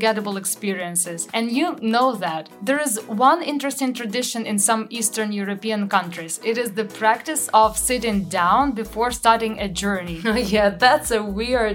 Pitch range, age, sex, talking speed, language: 200-250 Hz, 20-39, female, 160 wpm, English